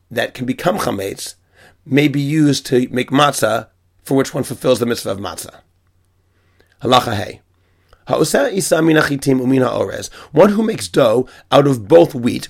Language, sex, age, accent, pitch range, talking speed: English, male, 40-59, American, 120-155 Hz, 155 wpm